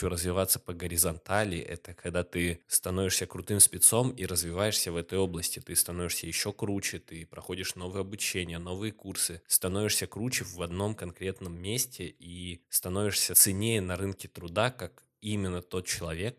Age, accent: 20-39, native